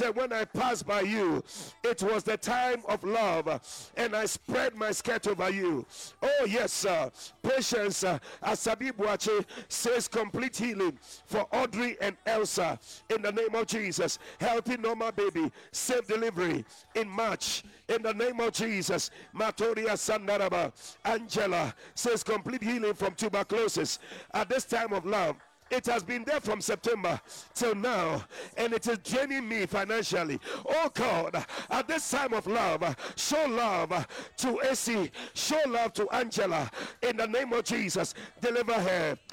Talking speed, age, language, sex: 150 wpm, 50-69, English, male